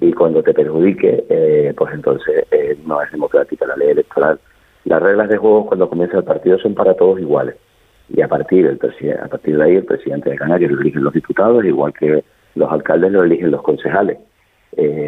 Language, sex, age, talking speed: Spanish, male, 50-69, 205 wpm